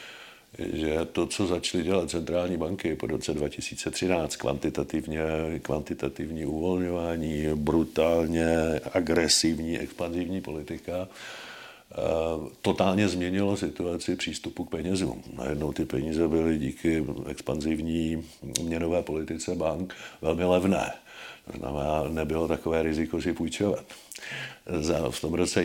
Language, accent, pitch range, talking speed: Czech, native, 80-95 Hz, 105 wpm